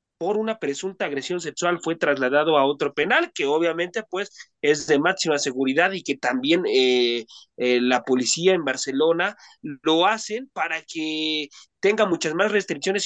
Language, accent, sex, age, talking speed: Spanish, Mexican, male, 30-49, 155 wpm